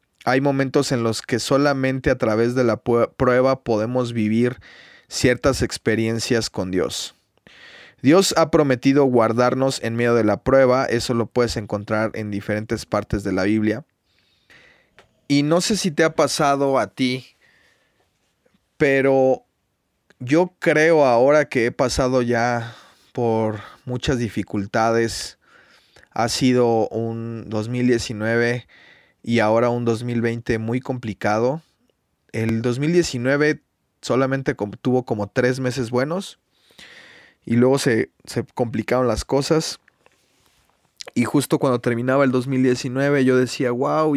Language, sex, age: Spanish, male, 20-39